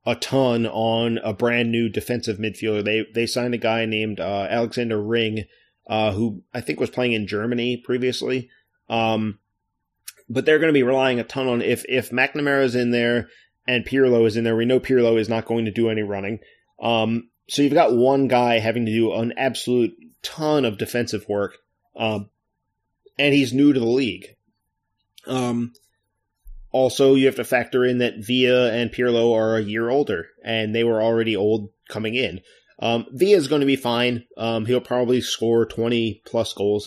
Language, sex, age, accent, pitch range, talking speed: English, male, 30-49, American, 110-125 Hz, 180 wpm